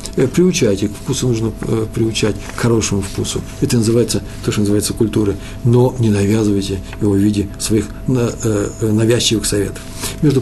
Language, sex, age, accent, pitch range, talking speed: Russian, male, 50-69, native, 100-125 Hz, 145 wpm